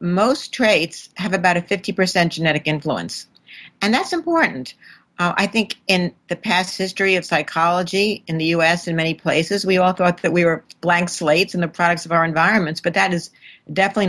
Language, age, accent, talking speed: English, 50-69, American, 185 wpm